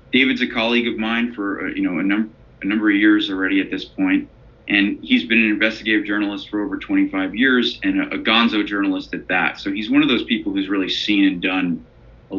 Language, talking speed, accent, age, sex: English, 230 wpm, American, 30-49, male